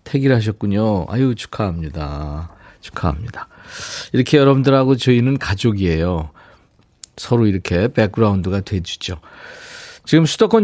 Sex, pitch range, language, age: male, 105-155 Hz, Korean, 40-59